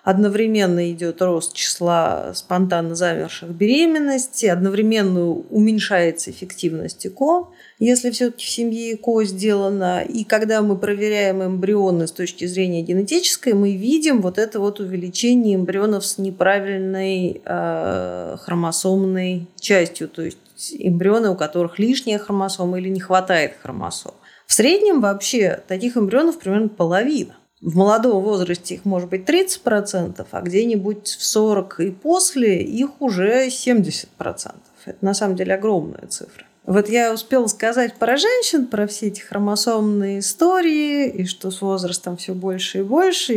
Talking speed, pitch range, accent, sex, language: 135 wpm, 185-235 Hz, native, female, Russian